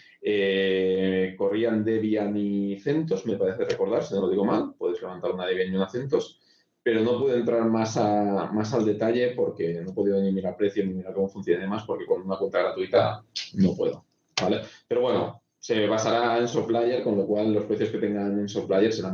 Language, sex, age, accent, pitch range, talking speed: Spanish, male, 30-49, Spanish, 100-145 Hz, 205 wpm